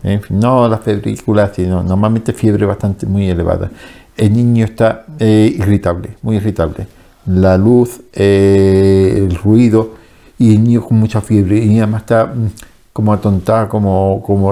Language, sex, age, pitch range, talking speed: Spanish, male, 50-69, 100-120 Hz, 145 wpm